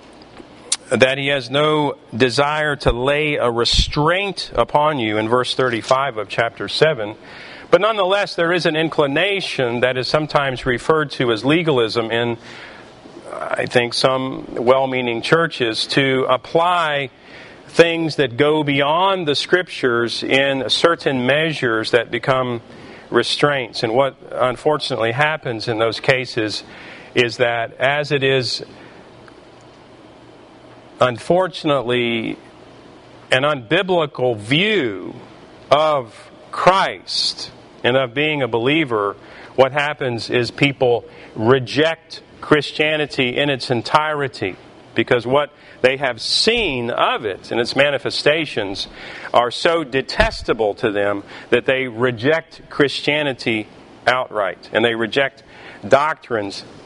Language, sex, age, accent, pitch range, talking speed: English, male, 40-59, American, 120-150 Hz, 110 wpm